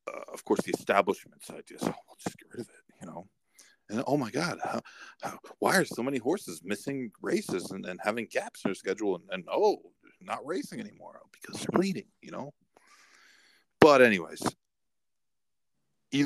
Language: English